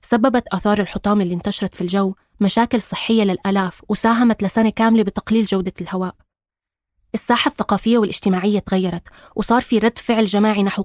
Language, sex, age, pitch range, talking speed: Arabic, female, 20-39, 185-220 Hz, 145 wpm